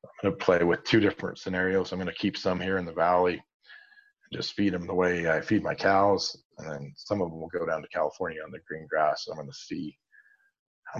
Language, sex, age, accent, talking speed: English, male, 40-59, American, 240 wpm